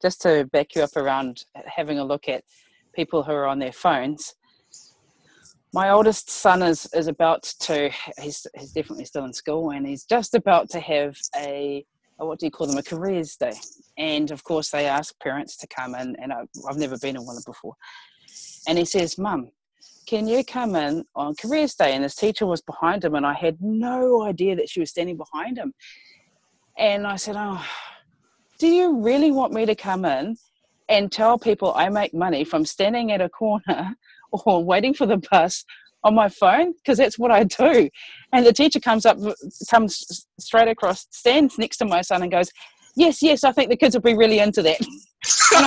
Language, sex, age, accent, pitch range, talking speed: English, female, 30-49, Australian, 160-260 Hz, 200 wpm